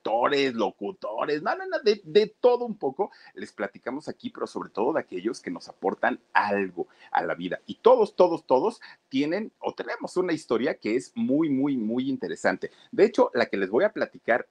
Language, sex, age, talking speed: Spanish, male, 40-59, 195 wpm